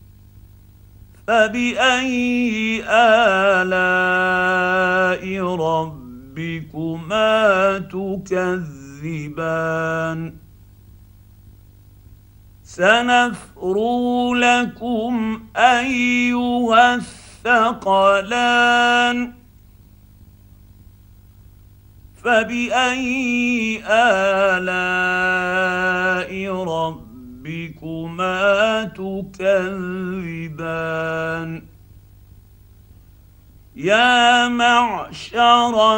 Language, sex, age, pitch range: Arabic, male, 50-69, 150-195 Hz